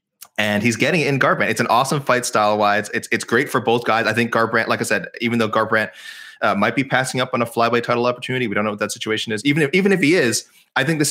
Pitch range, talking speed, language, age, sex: 105-125 Hz, 285 wpm, English, 20-39, male